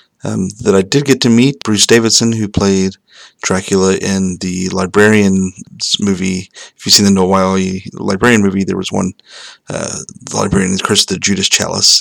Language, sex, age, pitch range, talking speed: English, male, 30-49, 95-105 Hz, 175 wpm